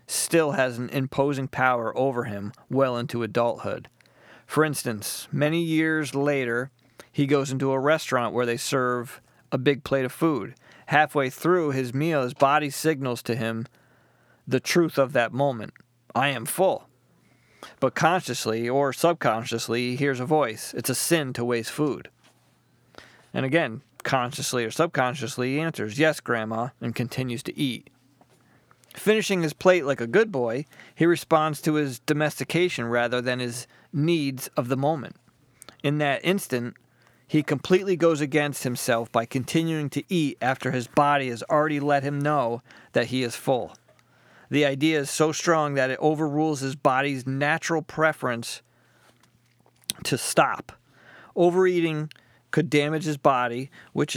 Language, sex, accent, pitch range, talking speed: English, male, American, 120-155 Hz, 150 wpm